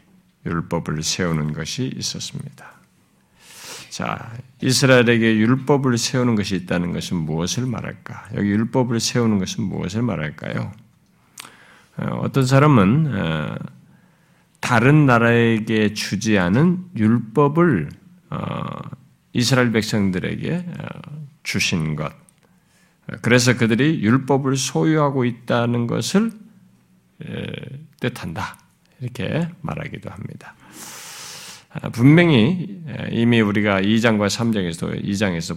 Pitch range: 115-170 Hz